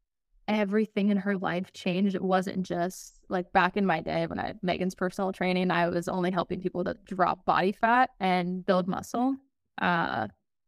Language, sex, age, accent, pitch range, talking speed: English, female, 10-29, American, 180-200 Hz, 175 wpm